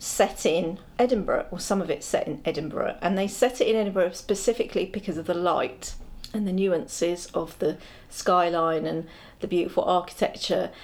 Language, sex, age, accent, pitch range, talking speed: English, female, 40-59, British, 170-245 Hz, 170 wpm